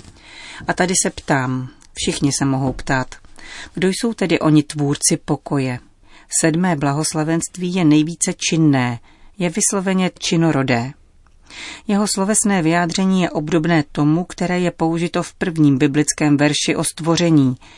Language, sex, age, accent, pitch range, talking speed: Czech, female, 40-59, native, 140-170 Hz, 125 wpm